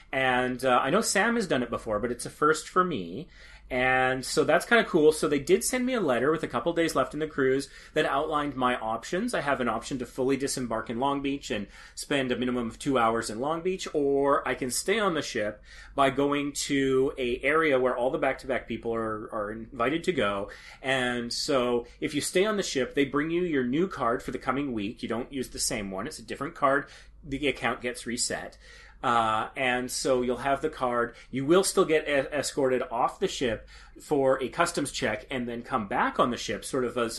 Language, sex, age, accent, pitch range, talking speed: English, male, 30-49, American, 120-145 Hz, 230 wpm